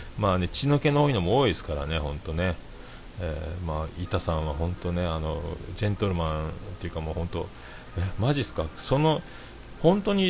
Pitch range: 80-105 Hz